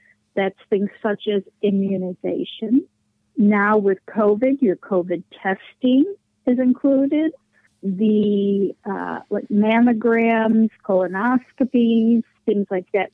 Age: 50-69